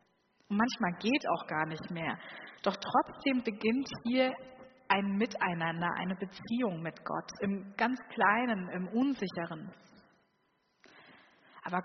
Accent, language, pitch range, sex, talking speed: German, German, 180-230 Hz, female, 115 wpm